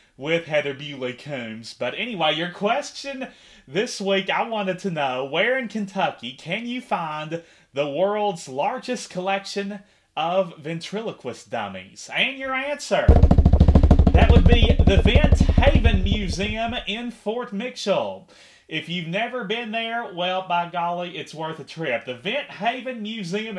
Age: 30-49